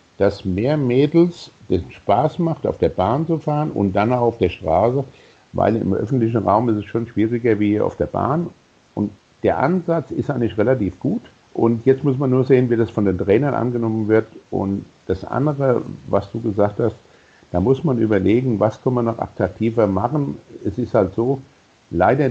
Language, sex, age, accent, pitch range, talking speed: German, male, 60-79, German, 100-135 Hz, 190 wpm